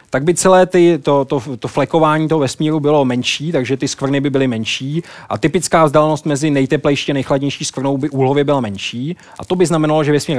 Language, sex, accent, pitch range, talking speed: Czech, male, native, 130-155 Hz, 210 wpm